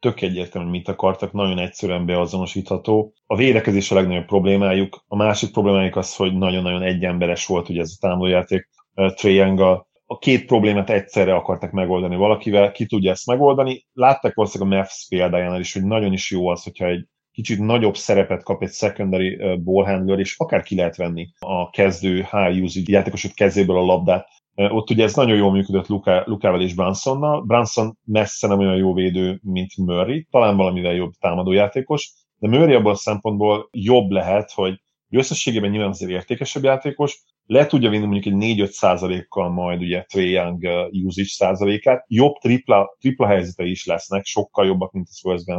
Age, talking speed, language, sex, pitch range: 30-49, 165 wpm, Hungarian, male, 90-105 Hz